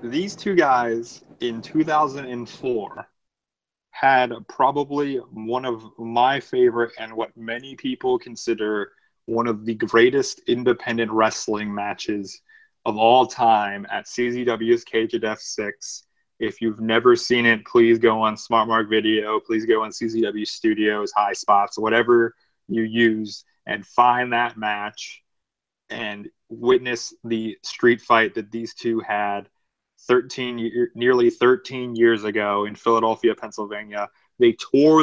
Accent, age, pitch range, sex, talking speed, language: American, 20-39, 110-125 Hz, male, 125 wpm, English